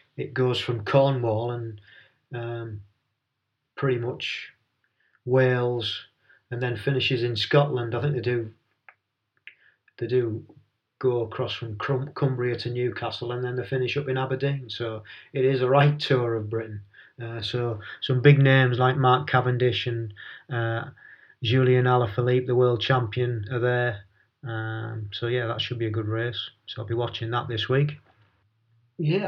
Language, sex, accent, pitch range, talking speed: English, male, British, 115-135 Hz, 155 wpm